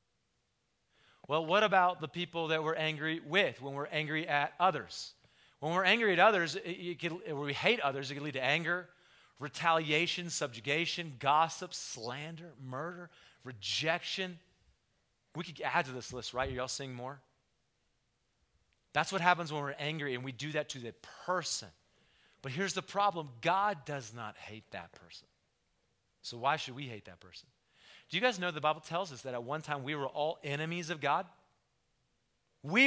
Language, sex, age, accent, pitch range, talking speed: English, male, 40-59, American, 120-170 Hz, 170 wpm